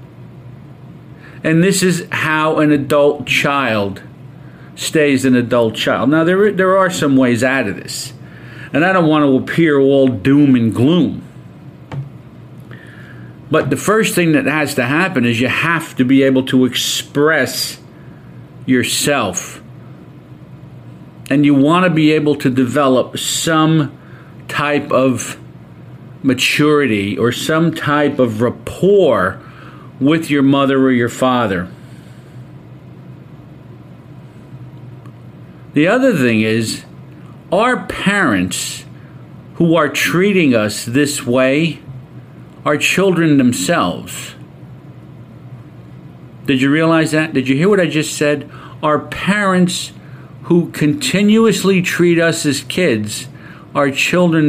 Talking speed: 115 wpm